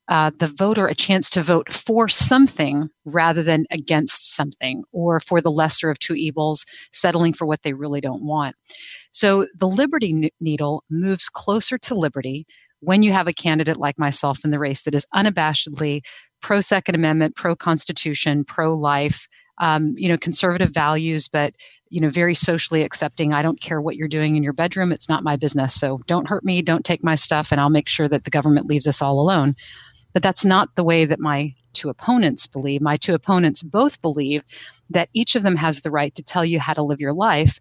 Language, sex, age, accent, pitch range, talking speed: English, female, 30-49, American, 145-180 Hz, 205 wpm